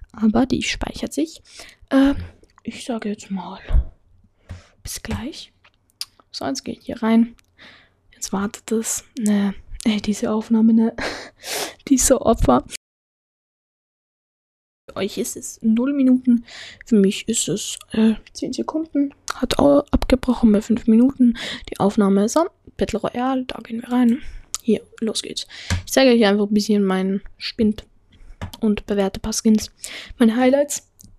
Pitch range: 205-250 Hz